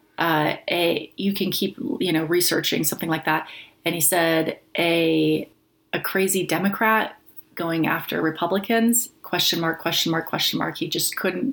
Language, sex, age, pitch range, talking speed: English, female, 30-49, 160-185 Hz, 155 wpm